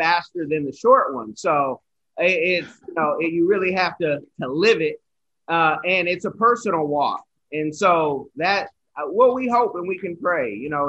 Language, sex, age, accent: English, male, 30-49, American